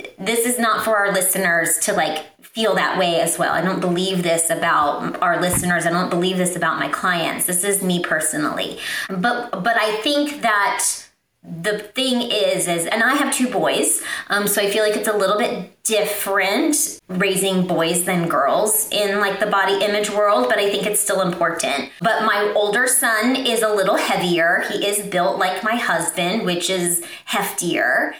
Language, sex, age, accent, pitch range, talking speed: English, female, 30-49, American, 180-220 Hz, 185 wpm